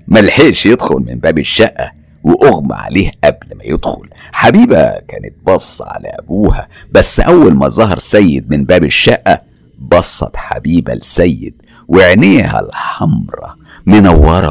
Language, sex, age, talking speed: Arabic, male, 60-79, 120 wpm